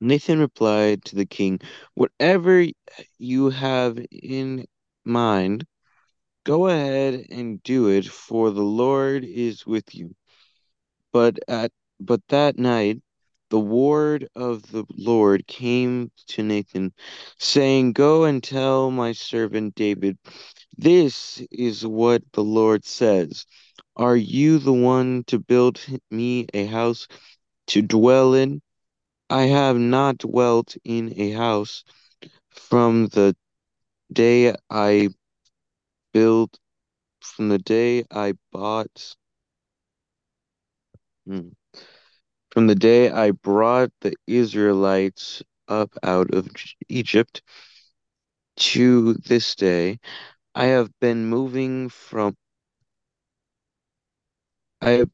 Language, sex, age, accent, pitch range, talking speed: English, male, 20-39, American, 105-125 Hz, 105 wpm